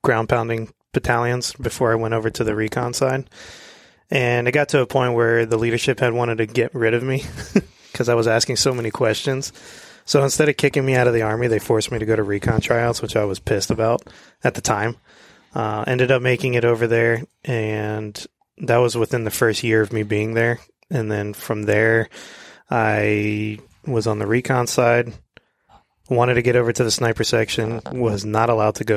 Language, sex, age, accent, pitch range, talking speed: English, male, 20-39, American, 110-125 Hz, 205 wpm